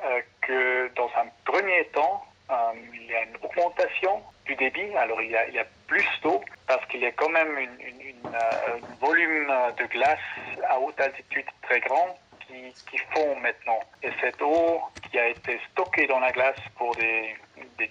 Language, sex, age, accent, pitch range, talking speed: French, male, 40-59, French, 125-160 Hz, 195 wpm